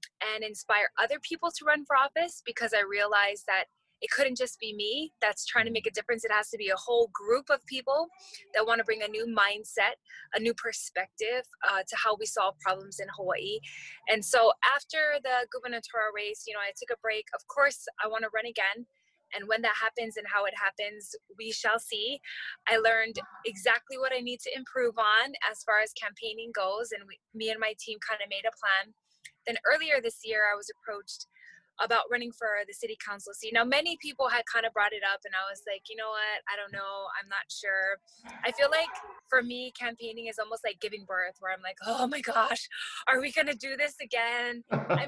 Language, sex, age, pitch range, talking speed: English, female, 20-39, 210-260 Hz, 220 wpm